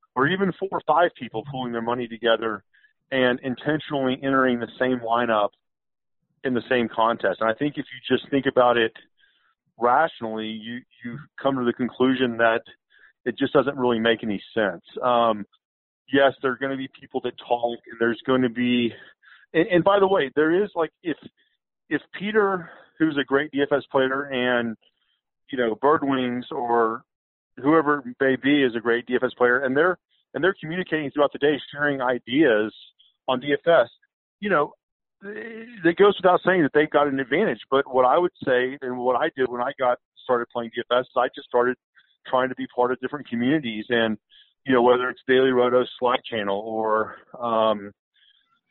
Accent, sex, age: American, male, 40-59